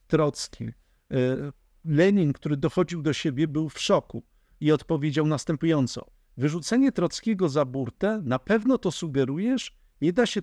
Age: 50-69